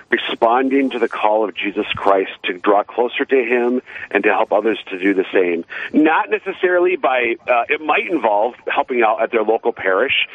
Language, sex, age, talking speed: English, male, 50-69, 190 wpm